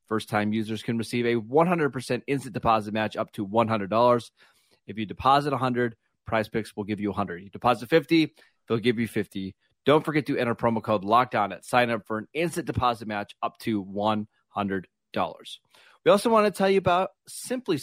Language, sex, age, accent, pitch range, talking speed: English, male, 30-49, American, 110-140 Hz, 190 wpm